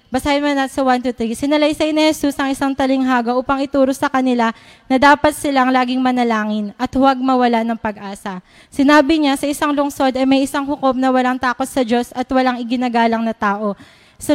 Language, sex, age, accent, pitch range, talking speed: Filipino, female, 20-39, native, 245-290 Hz, 190 wpm